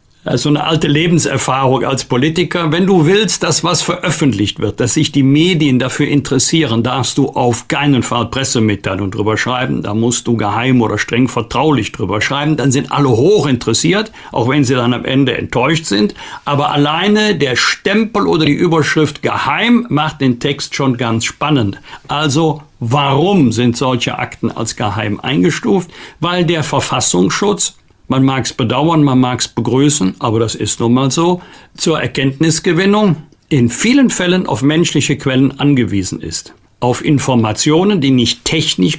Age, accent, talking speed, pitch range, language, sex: 50-69, German, 160 wpm, 125-155 Hz, German, male